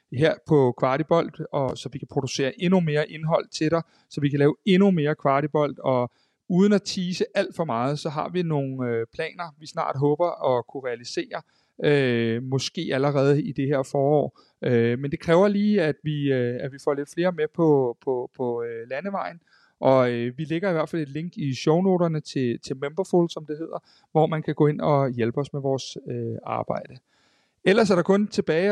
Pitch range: 140-175 Hz